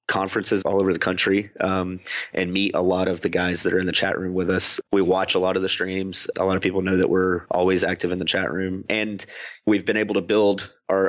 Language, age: English, 30-49